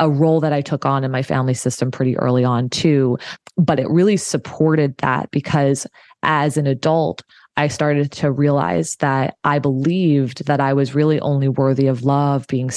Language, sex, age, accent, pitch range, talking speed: English, female, 20-39, American, 140-165 Hz, 185 wpm